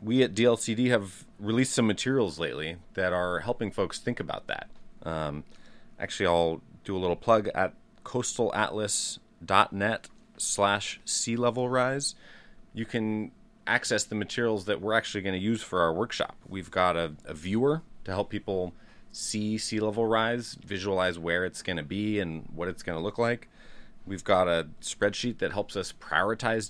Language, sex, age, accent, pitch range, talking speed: English, male, 30-49, American, 90-115 Hz, 170 wpm